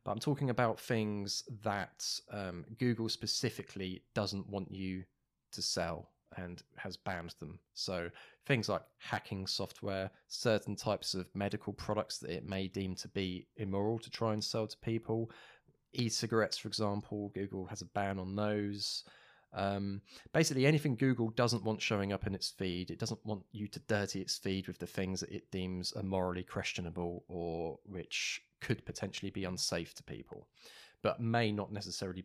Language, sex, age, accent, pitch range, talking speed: English, male, 20-39, British, 95-110 Hz, 165 wpm